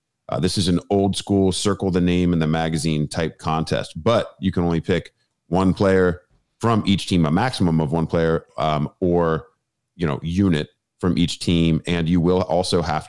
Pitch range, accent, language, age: 80-95 Hz, American, English, 30-49